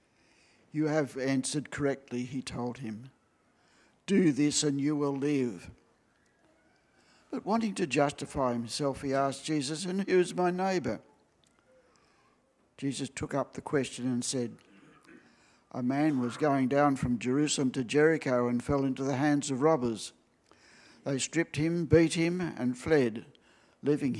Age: 60-79